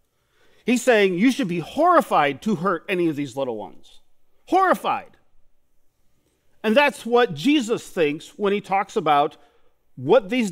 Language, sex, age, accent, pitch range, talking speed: English, male, 50-69, American, 160-225 Hz, 145 wpm